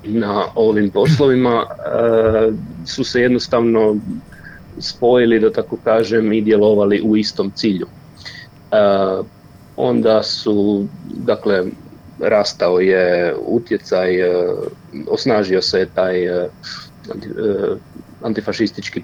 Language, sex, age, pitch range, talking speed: Croatian, male, 40-59, 100-110 Hz, 80 wpm